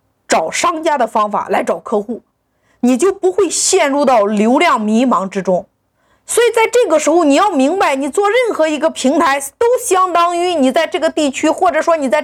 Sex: female